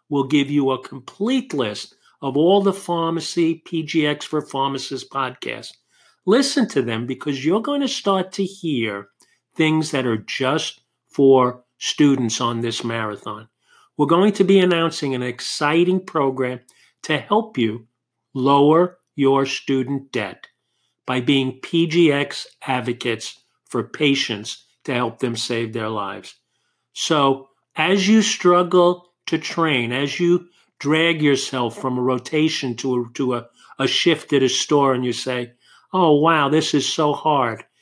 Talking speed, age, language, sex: 145 wpm, 50-69, English, male